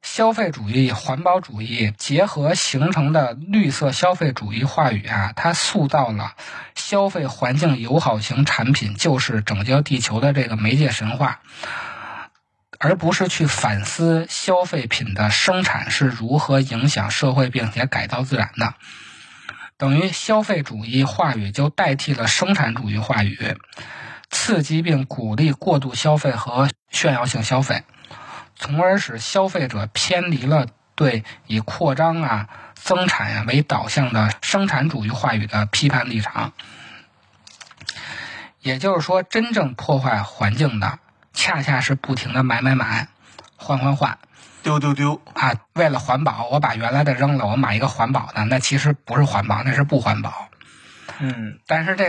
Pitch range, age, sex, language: 115-155 Hz, 20-39, male, Chinese